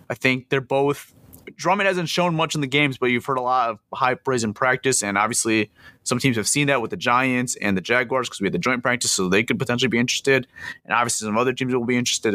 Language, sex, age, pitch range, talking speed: English, male, 30-49, 105-135 Hz, 260 wpm